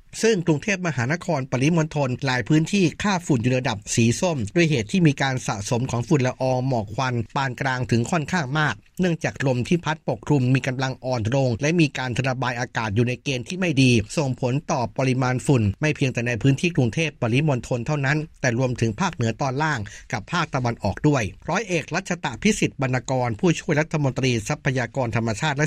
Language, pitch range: Thai, 125-155 Hz